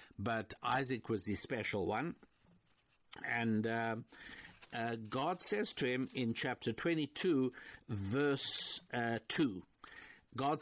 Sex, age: male, 60-79